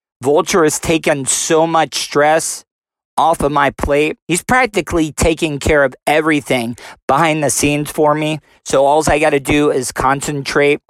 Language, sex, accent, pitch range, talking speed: English, male, American, 140-160 Hz, 160 wpm